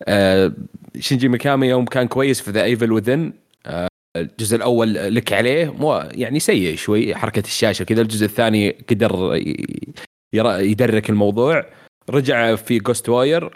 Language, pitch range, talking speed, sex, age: Arabic, 105-130 Hz, 135 wpm, male, 30-49